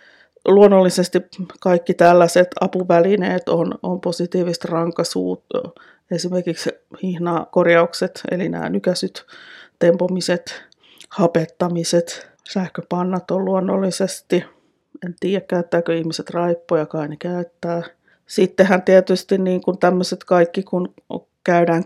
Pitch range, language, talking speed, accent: 160-180 Hz, Finnish, 90 wpm, native